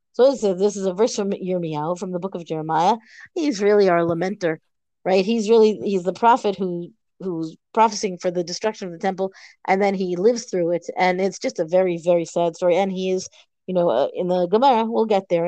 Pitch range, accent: 180-225 Hz, American